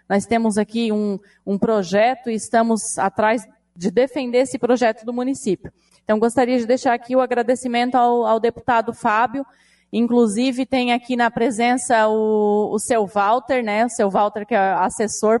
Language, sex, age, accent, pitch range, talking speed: Portuguese, female, 20-39, Brazilian, 215-250 Hz, 165 wpm